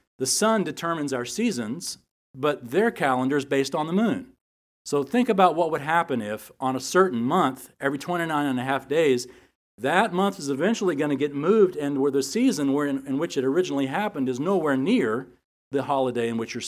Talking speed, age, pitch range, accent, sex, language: 200 wpm, 50-69, 115-165 Hz, American, male, English